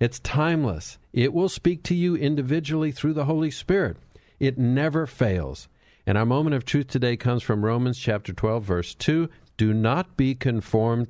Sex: male